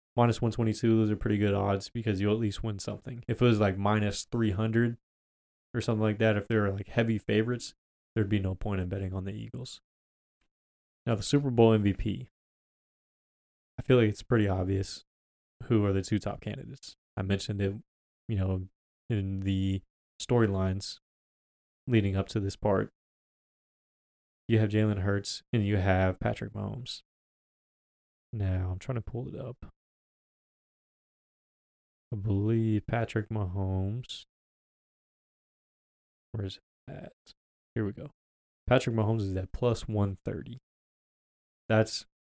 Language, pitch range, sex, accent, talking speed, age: English, 95-110 Hz, male, American, 140 wpm, 20-39